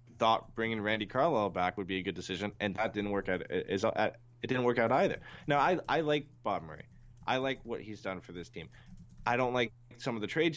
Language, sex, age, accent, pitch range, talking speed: English, male, 20-39, American, 95-120 Hz, 235 wpm